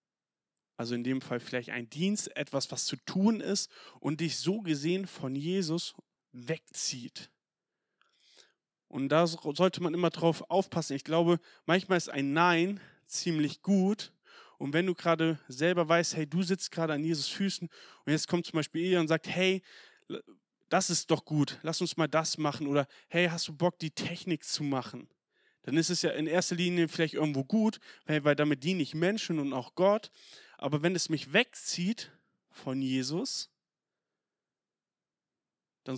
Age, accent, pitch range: 30-49, German, 140-175 Hz